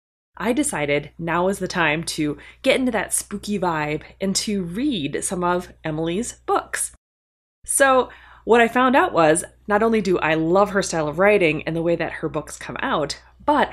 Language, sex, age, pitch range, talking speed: English, female, 20-39, 160-215 Hz, 190 wpm